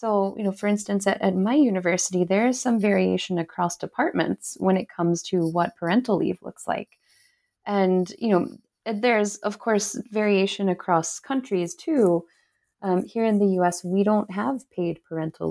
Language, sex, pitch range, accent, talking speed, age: English, female, 165-205 Hz, American, 170 wpm, 20-39